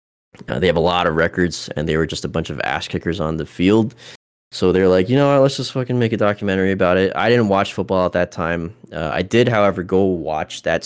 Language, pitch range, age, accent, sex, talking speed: English, 80-100 Hz, 20-39, American, male, 255 wpm